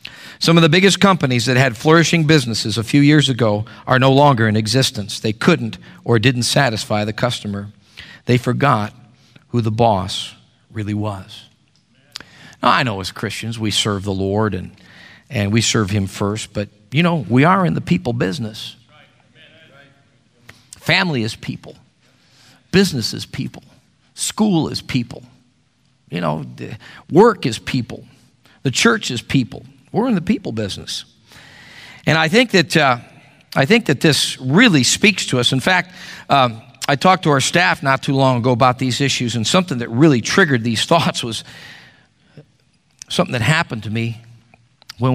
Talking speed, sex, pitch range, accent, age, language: 160 wpm, male, 110-140 Hz, American, 50-69, English